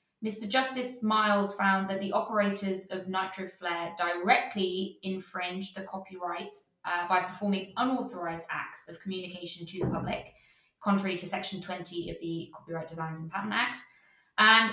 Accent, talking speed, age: British, 145 wpm, 20-39